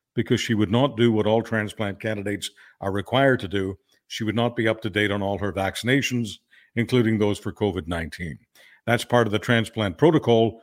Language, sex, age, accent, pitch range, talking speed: English, male, 60-79, American, 110-140 Hz, 200 wpm